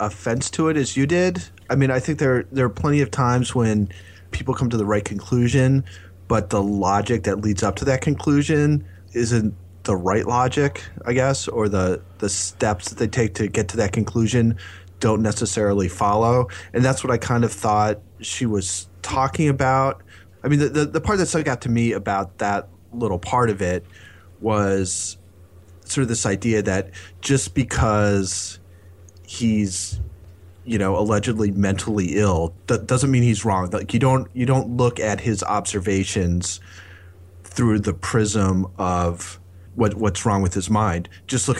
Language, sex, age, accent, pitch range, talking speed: English, male, 30-49, American, 95-120 Hz, 175 wpm